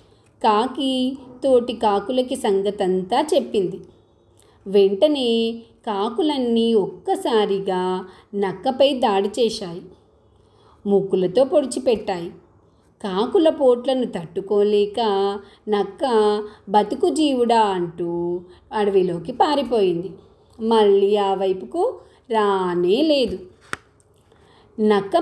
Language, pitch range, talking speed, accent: Telugu, 195-265 Hz, 65 wpm, native